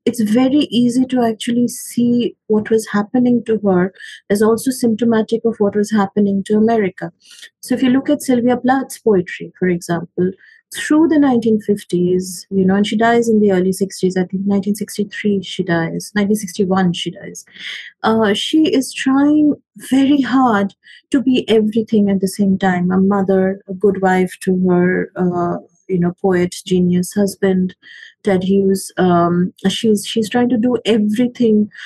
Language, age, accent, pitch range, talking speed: English, 30-49, Indian, 185-230 Hz, 160 wpm